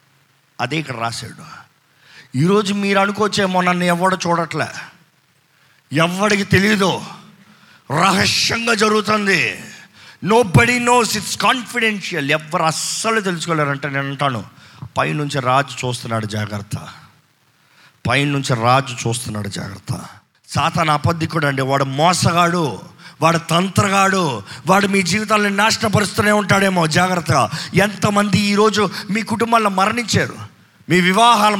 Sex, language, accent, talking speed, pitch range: male, Telugu, native, 100 wpm, 145-205 Hz